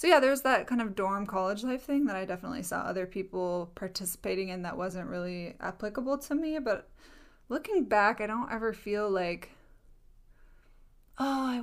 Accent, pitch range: American, 185-235 Hz